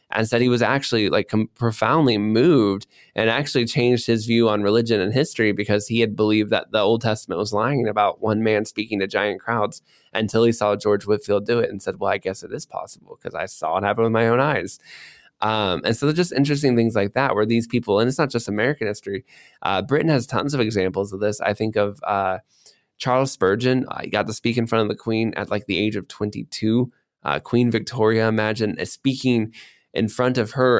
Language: English